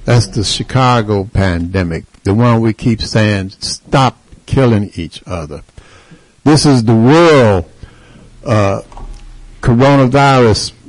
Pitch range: 95-125 Hz